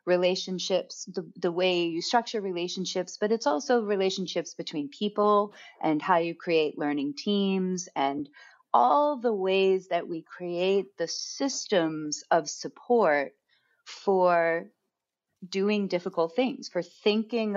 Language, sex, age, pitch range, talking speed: English, female, 40-59, 170-215 Hz, 125 wpm